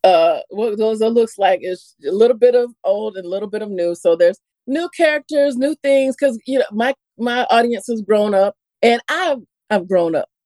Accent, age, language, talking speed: American, 40-59, English, 210 wpm